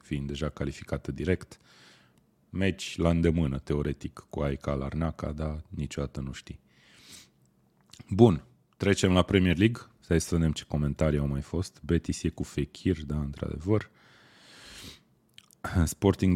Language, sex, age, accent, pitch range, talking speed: Romanian, male, 30-49, native, 75-95 Hz, 130 wpm